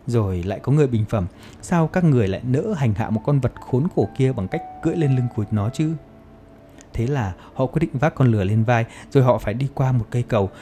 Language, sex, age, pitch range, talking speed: Vietnamese, male, 20-39, 105-135 Hz, 255 wpm